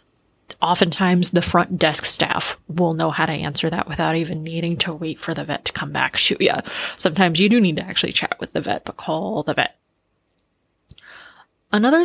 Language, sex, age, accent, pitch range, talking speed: English, female, 20-39, American, 175-225 Hz, 195 wpm